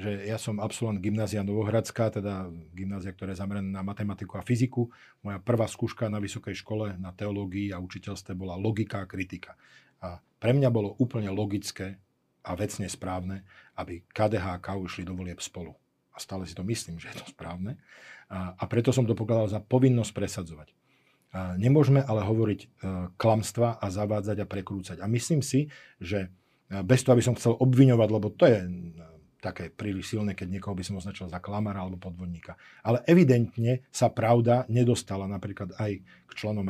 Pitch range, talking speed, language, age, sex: 95-120 Hz, 170 wpm, Slovak, 40-59, male